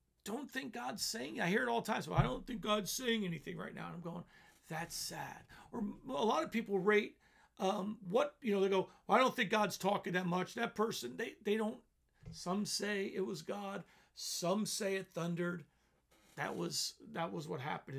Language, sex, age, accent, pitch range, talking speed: English, male, 50-69, American, 155-210 Hz, 215 wpm